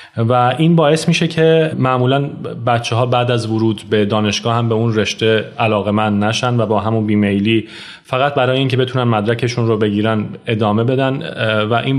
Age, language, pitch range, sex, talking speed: 30-49, Persian, 110-130 Hz, male, 180 wpm